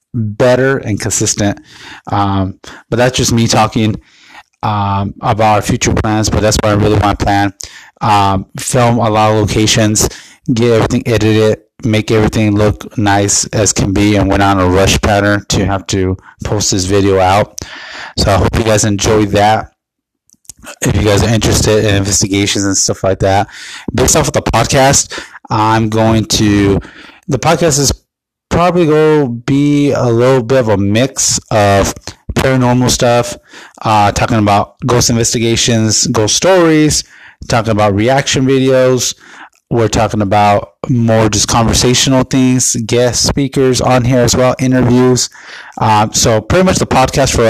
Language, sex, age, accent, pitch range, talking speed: English, male, 20-39, American, 105-125 Hz, 155 wpm